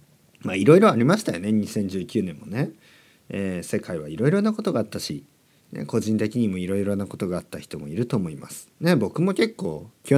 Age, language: 40-59, Japanese